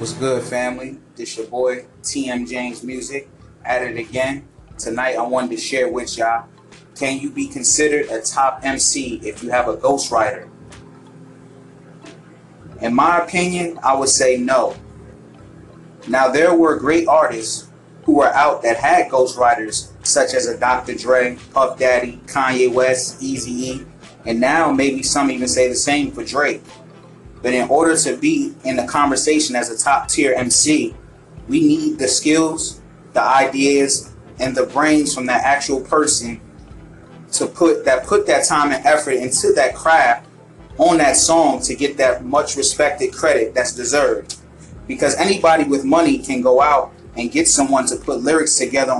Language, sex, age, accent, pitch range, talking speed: English, male, 30-49, American, 125-165 Hz, 160 wpm